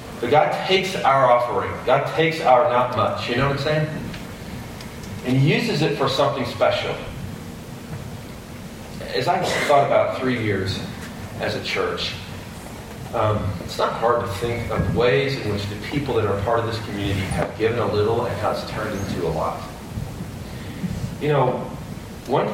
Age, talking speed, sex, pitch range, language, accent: 40-59, 165 wpm, male, 100-120 Hz, English, American